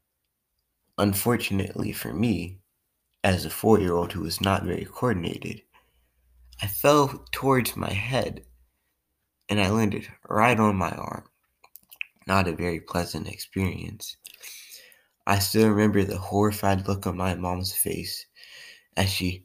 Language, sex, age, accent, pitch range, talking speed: English, male, 20-39, American, 90-110 Hz, 130 wpm